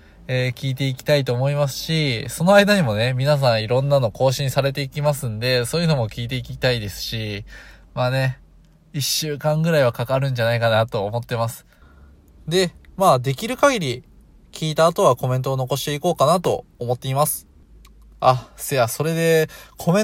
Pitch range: 115-180 Hz